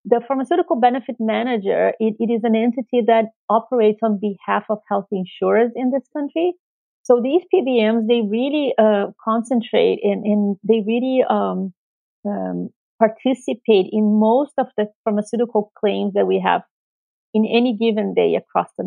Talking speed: 150 wpm